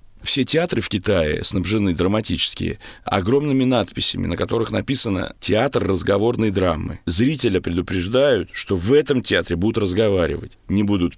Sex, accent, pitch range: male, native, 95-125 Hz